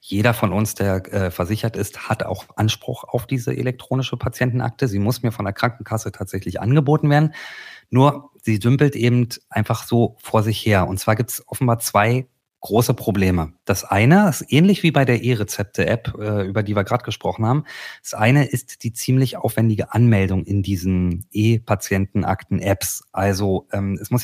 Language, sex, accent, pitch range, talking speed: German, male, German, 105-130 Hz, 165 wpm